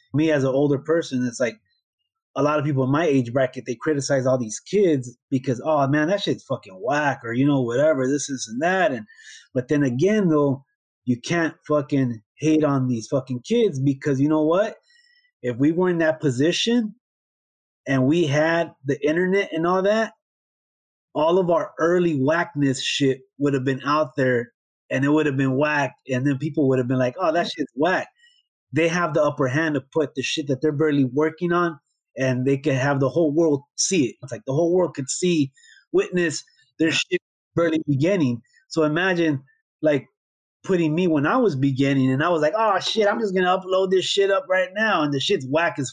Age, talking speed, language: 30-49, 210 wpm, English